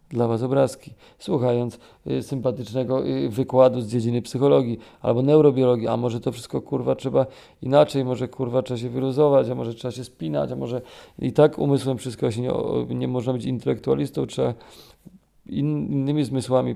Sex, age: male, 40-59